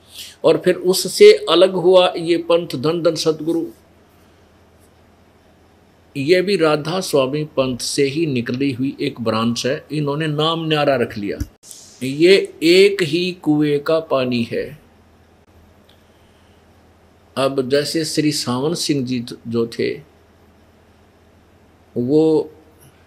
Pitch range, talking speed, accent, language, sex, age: 100-155 Hz, 110 wpm, native, Hindi, male, 50-69